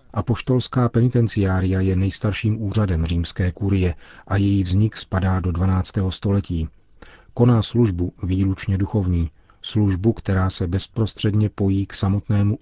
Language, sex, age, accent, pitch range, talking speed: Czech, male, 40-59, native, 90-105 Hz, 120 wpm